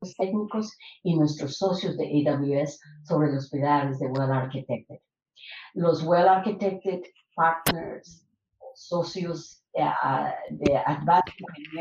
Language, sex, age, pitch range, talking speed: Spanish, female, 50-69, 150-180 Hz, 95 wpm